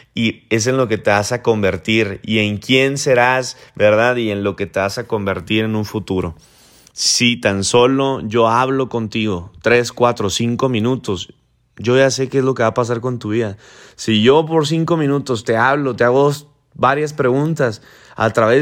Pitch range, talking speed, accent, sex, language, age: 115-145 Hz, 195 wpm, Mexican, male, Spanish, 30-49